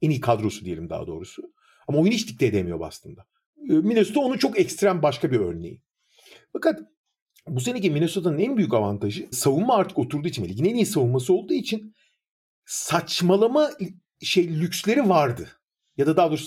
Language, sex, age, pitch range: Turkish, male, 50-69, 140-215 Hz